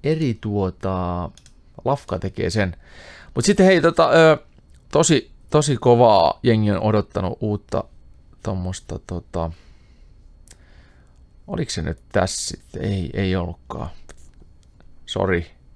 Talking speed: 105 wpm